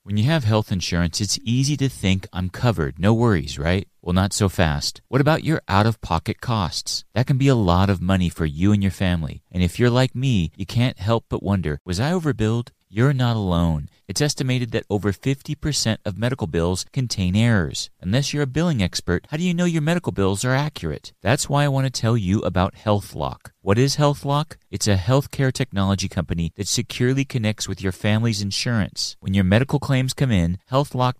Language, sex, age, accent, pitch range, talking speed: English, male, 30-49, American, 90-125 Hz, 205 wpm